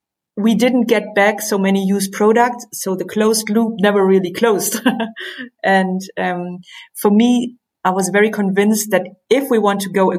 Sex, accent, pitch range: female, German, 180-215 Hz